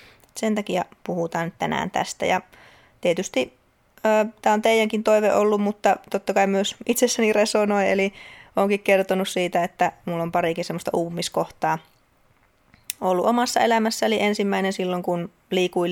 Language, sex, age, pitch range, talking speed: Finnish, female, 20-39, 170-205 Hz, 135 wpm